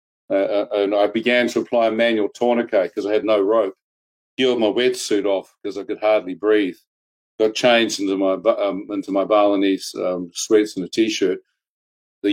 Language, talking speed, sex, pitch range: English, 185 wpm, male, 105-125 Hz